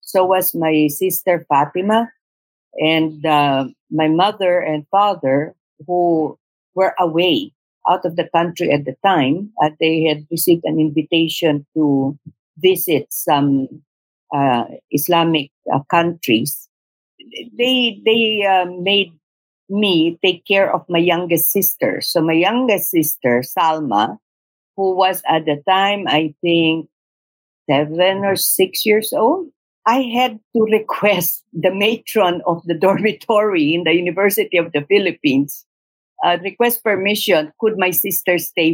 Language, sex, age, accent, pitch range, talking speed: English, female, 50-69, Filipino, 160-215 Hz, 130 wpm